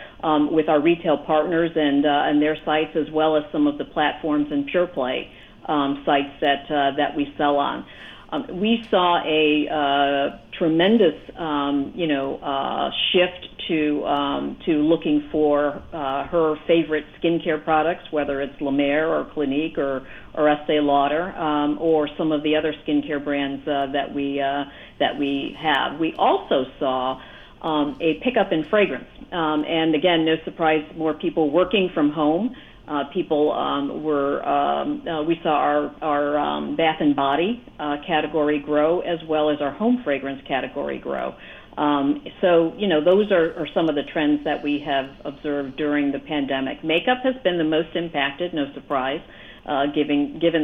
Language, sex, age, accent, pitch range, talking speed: English, female, 50-69, American, 140-160 Hz, 175 wpm